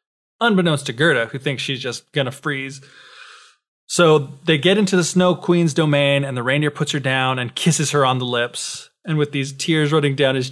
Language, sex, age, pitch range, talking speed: English, male, 20-39, 130-155 Hz, 205 wpm